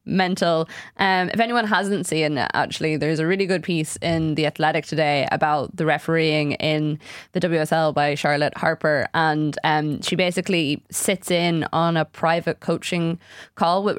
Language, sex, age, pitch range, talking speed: English, female, 20-39, 150-175 Hz, 165 wpm